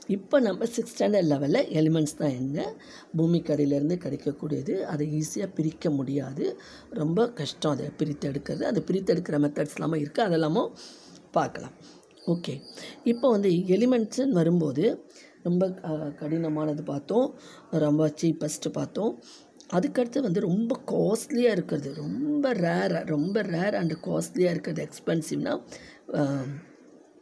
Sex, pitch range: female, 150-190 Hz